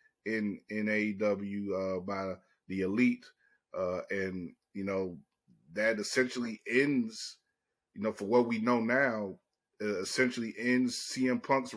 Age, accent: 30-49, American